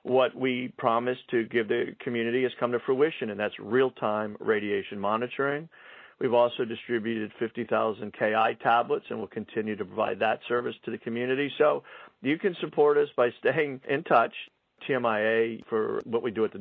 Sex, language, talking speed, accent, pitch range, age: male, English, 175 wpm, American, 110-140 Hz, 50-69